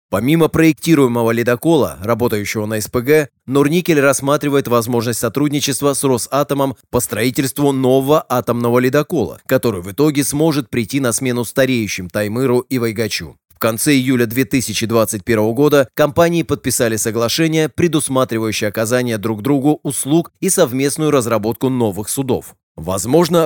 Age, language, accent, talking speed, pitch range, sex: 20-39, Russian, native, 120 wpm, 115-145 Hz, male